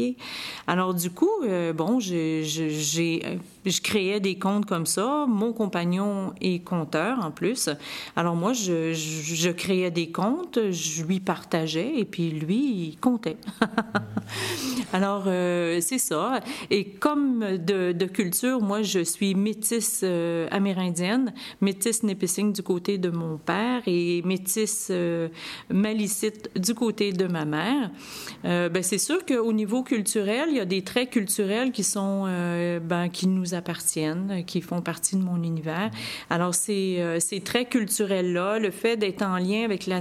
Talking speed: 155 wpm